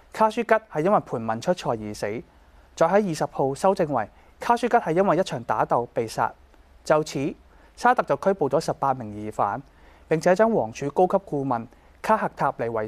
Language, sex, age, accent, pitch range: Chinese, male, 20-39, native, 120-185 Hz